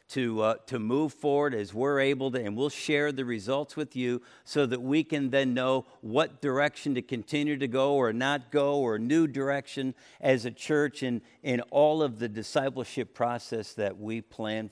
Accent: American